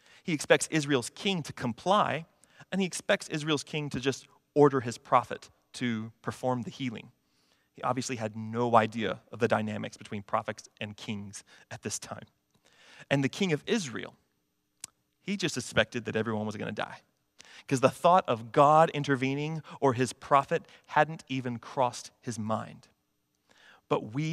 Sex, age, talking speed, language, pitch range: male, 30-49, 160 wpm, English, 110-145 Hz